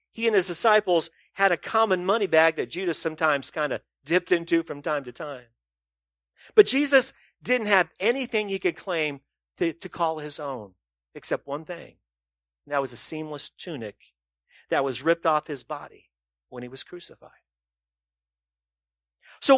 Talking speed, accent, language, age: 160 wpm, American, English, 40-59